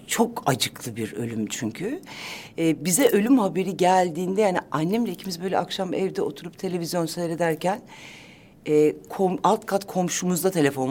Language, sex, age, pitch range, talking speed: Turkish, female, 60-79, 155-220 Hz, 140 wpm